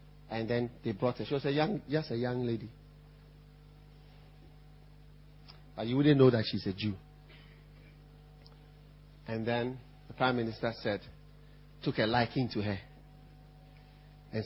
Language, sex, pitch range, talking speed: English, male, 120-150 Hz, 140 wpm